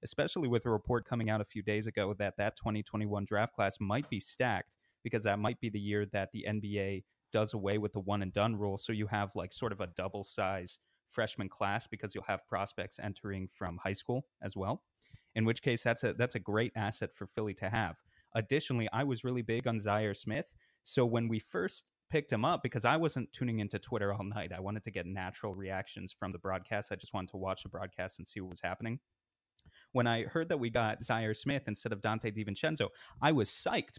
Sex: male